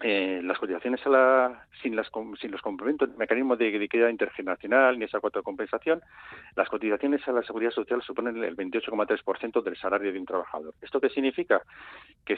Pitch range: 100-135 Hz